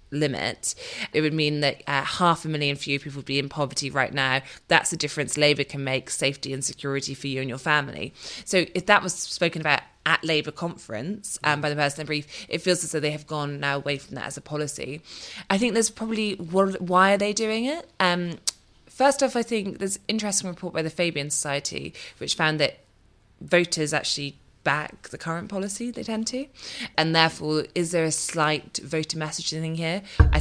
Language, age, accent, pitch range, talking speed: English, 20-39, British, 140-165 Hz, 210 wpm